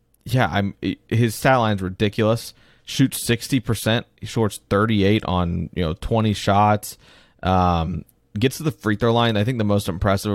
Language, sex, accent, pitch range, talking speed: English, male, American, 95-115 Hz, 155 wpm